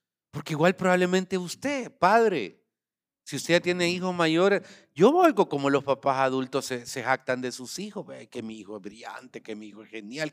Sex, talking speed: male, 200 wpm